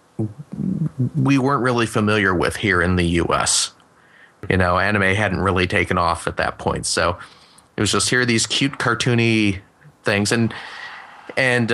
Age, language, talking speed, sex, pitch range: 30-49, English, 160 wpm, male, 95-120 Hz